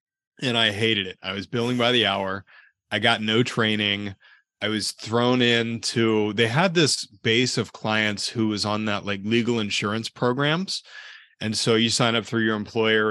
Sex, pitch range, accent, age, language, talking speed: male, 105-120 Hz, American, 30-49, English, 185 wpm